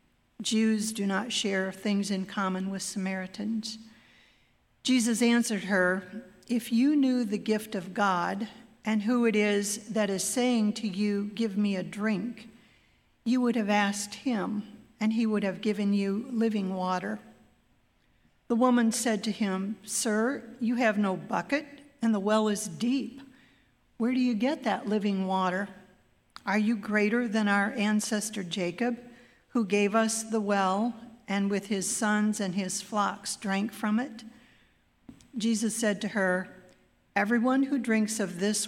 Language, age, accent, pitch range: English, 50-69, American, 200-225 Hz